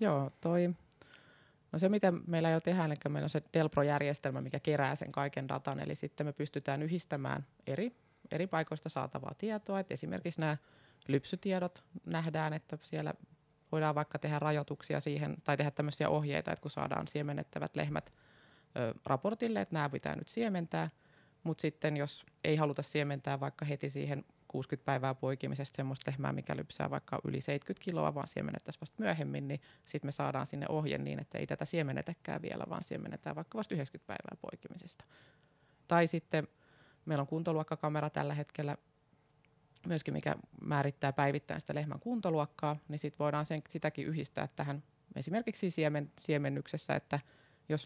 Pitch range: 140-155 Hz